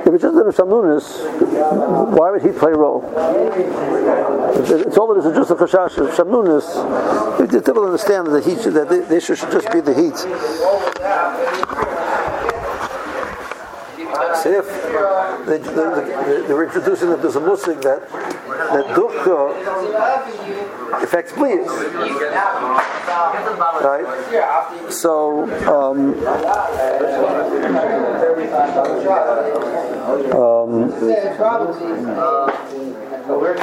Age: 60-79